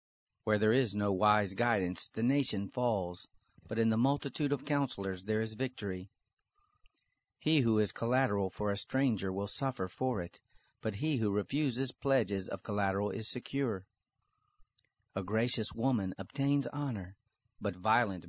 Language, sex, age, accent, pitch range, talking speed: English, male, 40-59, American, 100-130 Hz, 150 wpm